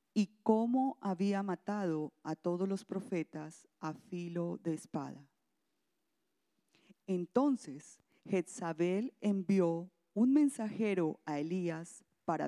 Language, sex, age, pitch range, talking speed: English, female, 40-59, 165-225 Hz, 95 wpm